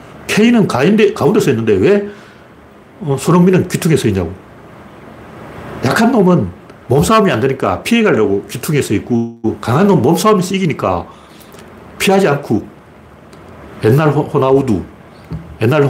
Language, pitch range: Korean, 105-155 Hz